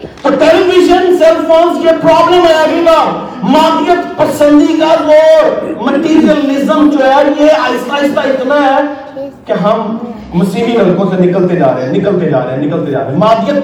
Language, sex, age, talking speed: Urdu, male, 50-69, 170 wpm